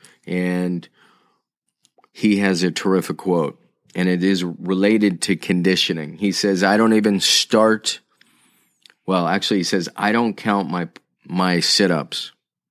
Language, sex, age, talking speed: English, male, 30-49, 130 wpm